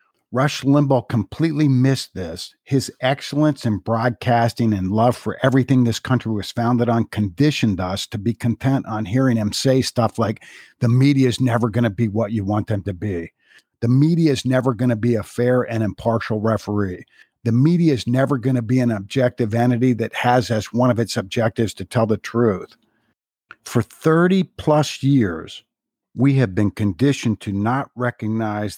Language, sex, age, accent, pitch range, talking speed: English, male, 50-69, American, 110-130 Hz, 180 wpm